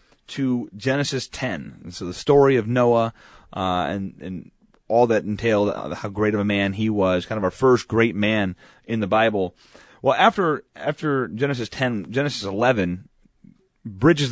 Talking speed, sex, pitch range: 165 wpm, male, 100-135 Hz